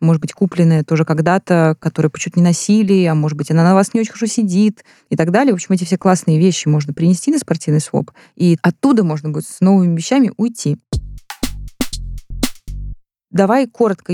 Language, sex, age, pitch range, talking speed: Russian, female, 20-39, 155-190 Hz, 185 wpm